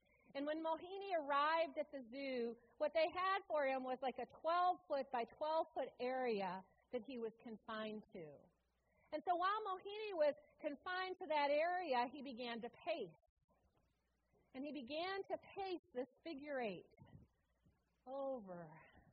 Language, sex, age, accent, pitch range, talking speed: English, female, 40-59, American, 220-310 Hz, 145 wpm